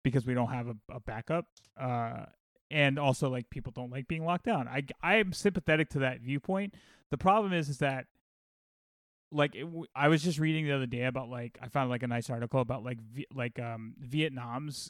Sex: male